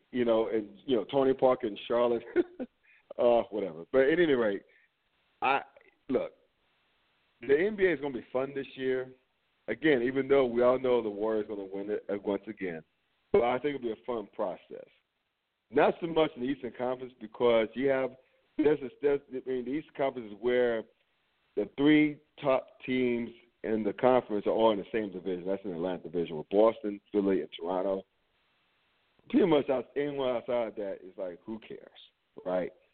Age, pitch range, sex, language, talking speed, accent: 50-69, 105-135 Hz, male, English, 190 wpm, American